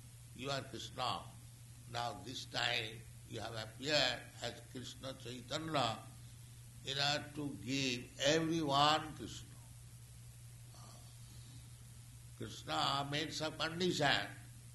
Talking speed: 80 wpm